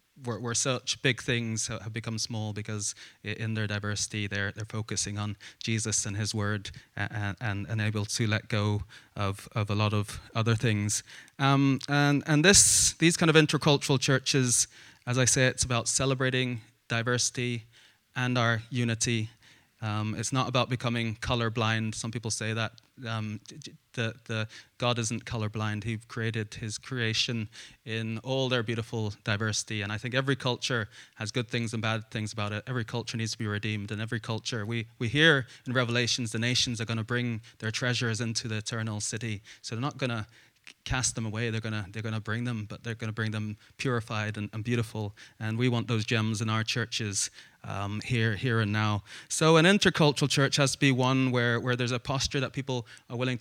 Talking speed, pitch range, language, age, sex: 190 wpm, 110-125 Hz, English, 20-39, male